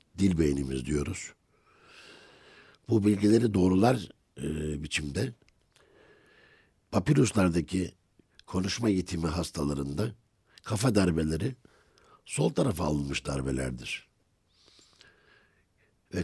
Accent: native